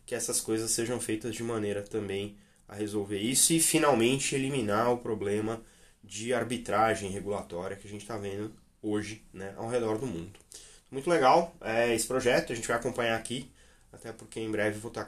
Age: 20-39